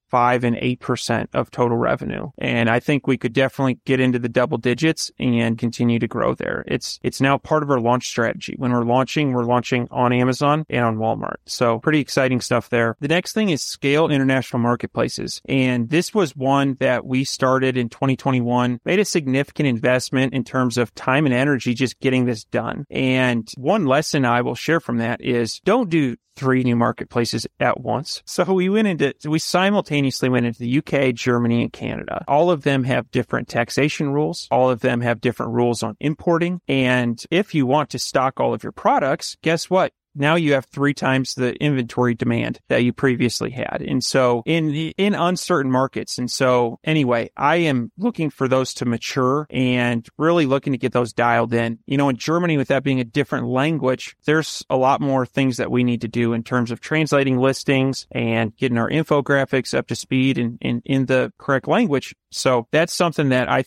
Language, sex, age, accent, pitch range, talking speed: English, male, 30-49, American, 120-145 Hz, 200 wpm